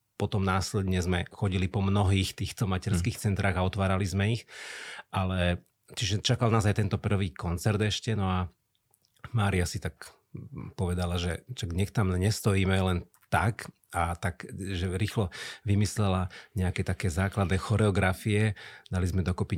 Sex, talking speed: male, 140 wpm